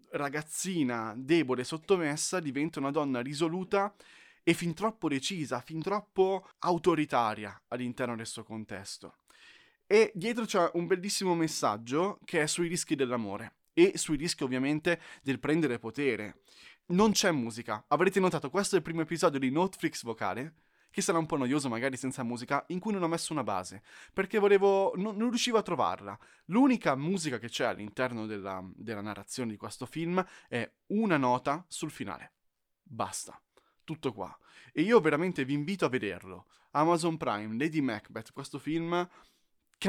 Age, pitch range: 20-39, 125-180 Hz